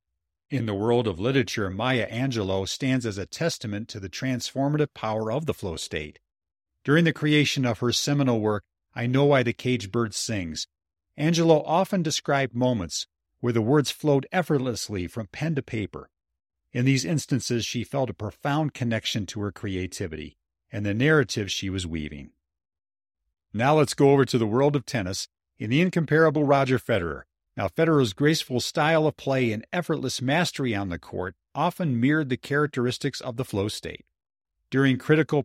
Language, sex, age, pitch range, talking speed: English, male, 50-69, 100-140 Hz, 170 wpm